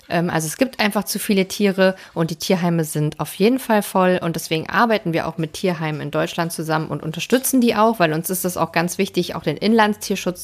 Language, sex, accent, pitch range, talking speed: German, female, German, 160-190 Hz, 225 wpm